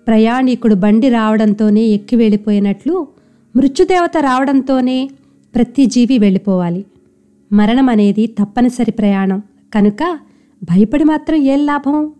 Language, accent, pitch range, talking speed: Telugu, native, 210-275 Hz, 90 wpm